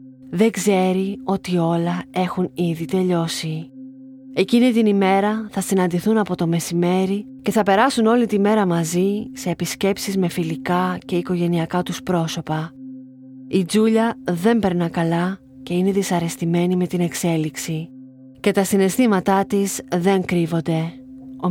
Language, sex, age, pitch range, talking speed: Greek, female, 30-49, 170-205 Hz, 135 wpm